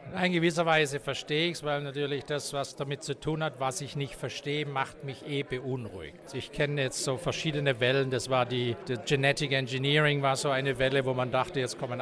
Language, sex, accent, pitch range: English, male, German, 130-160 Hz